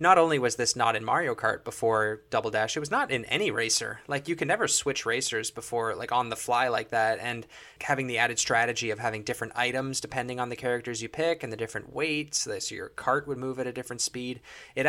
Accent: American